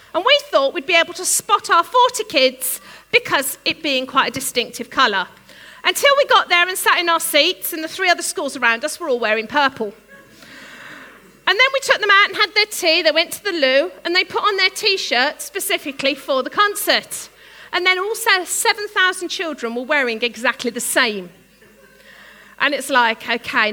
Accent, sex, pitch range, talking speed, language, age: British, female, 255-350 Hz, 195 wpm, English, 40-59